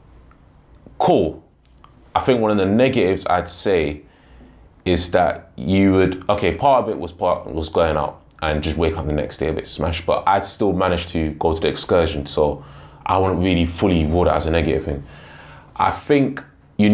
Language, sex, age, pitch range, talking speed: English, male, 20-39, 80-100 Hz, 200 wpm